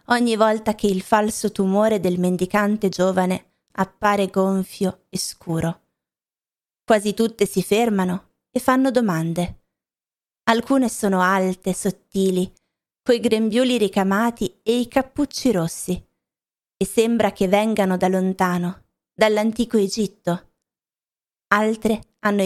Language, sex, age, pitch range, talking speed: Italian, female, 20-39, 185-230 Hz, 110 wpm